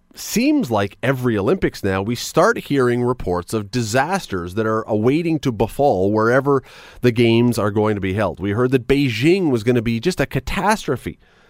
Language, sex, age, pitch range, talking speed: English, male, 40-59, 105-150 Hz, 185 wpm